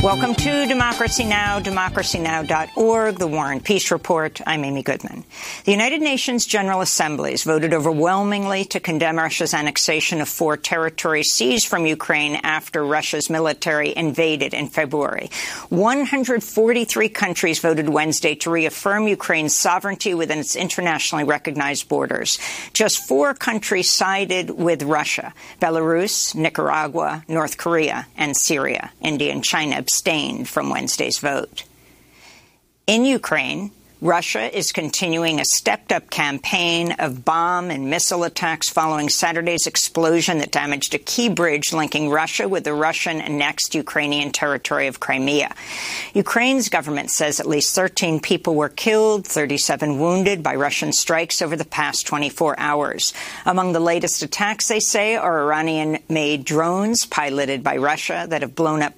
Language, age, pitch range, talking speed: English, 50-69, 150-195 Hz, 135 wpm